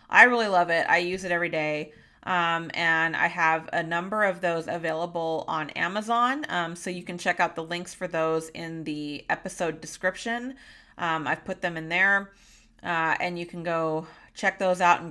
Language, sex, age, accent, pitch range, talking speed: English, female, 30-49, American, 170-205 Hz, 195 wpm